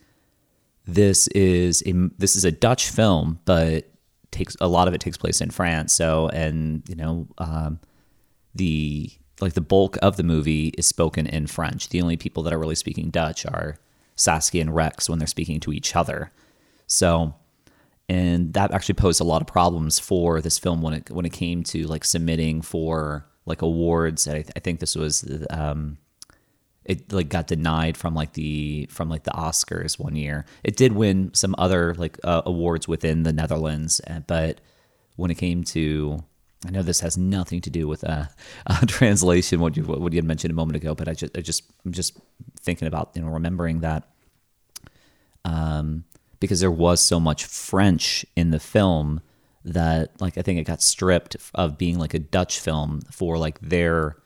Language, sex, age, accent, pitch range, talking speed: English, male, 30-49, American, 80-90 Hz, 185 wpm